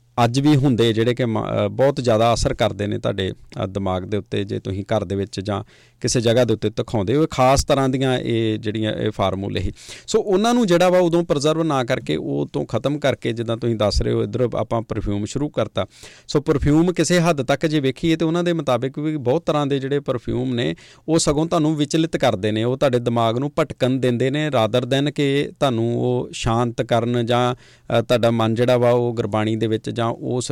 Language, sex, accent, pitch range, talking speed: English, male, Indian, 115-145 Hz, 120 wpm